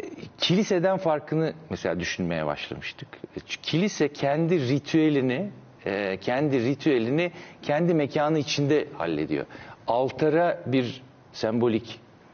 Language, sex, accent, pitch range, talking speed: Turkish, male, native, 115-155 Hz, 85 wpm